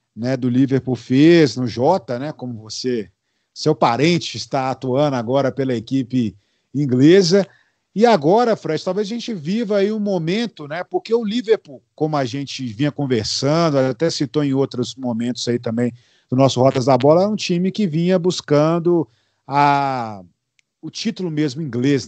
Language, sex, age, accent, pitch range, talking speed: Portuguese, male, 40-59, Brazilian, 130-165 Hz, 160 wpm